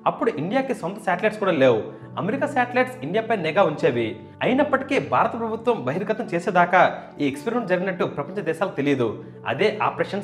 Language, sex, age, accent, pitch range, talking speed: Telugu, male, 30-49, native, 160-240 Hz, 145 wpm